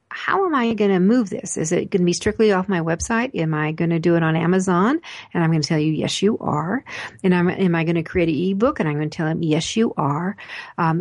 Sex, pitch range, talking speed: female, 165-200 Hz, 285 wpm